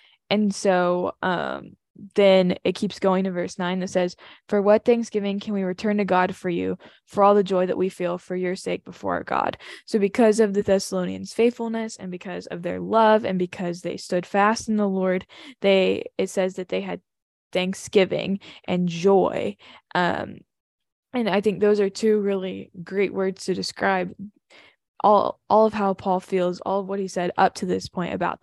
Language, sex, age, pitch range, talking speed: English, female, 10-29, 180-205 Hz, 190 wpm